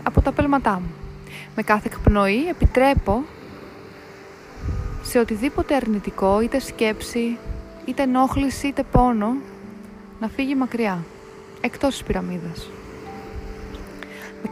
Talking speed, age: 100 wpm, 20-39